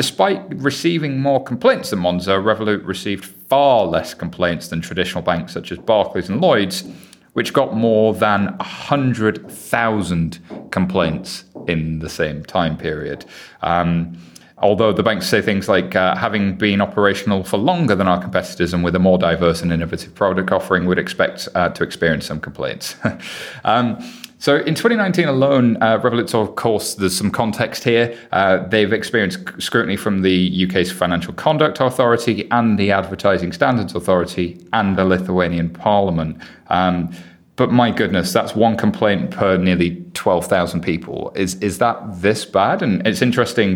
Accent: British